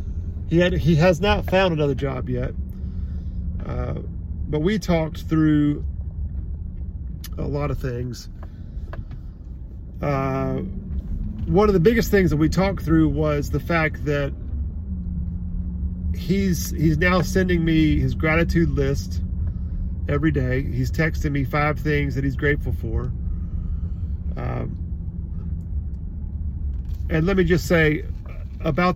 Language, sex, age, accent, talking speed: English, male, 40-59, American, 120 wpm